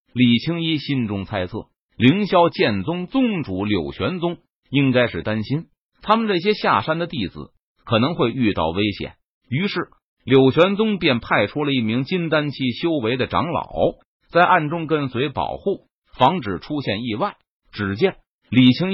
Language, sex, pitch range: Chinese, male, 110-165 Hz